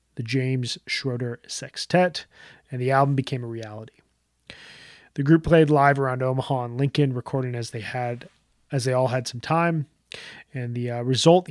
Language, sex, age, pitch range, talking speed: English, male, 30-49, 125-150 Hz, 165 wpm